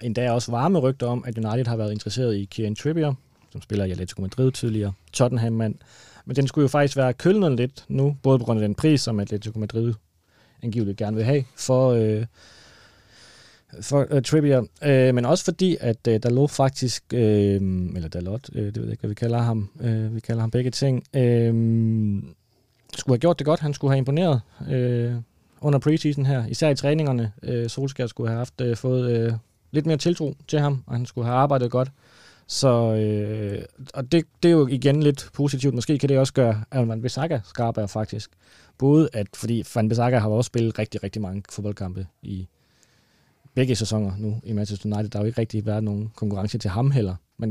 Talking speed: 205 wpm